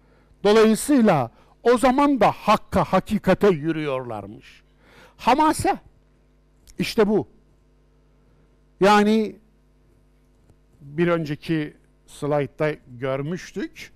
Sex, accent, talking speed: male, native, 65 wpm